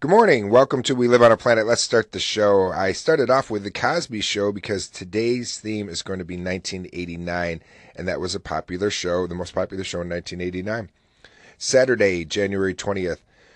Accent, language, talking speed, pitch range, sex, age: American, English, 190 wpm, 90-105 Hz, male, 30-49